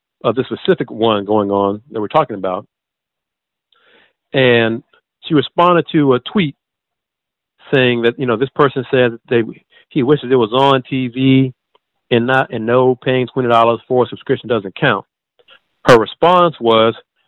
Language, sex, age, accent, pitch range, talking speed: English, male, 40-59, American, 110-130 Hz, 155 wpm